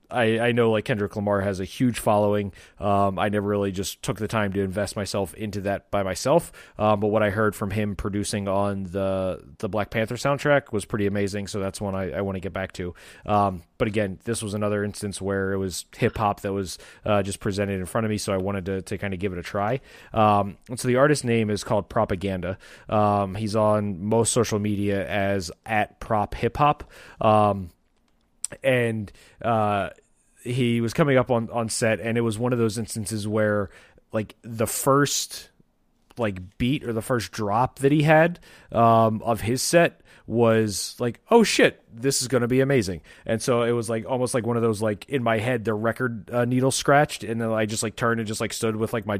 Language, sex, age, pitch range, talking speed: English, male, 20-39, 100-115 Hz, 215 wpm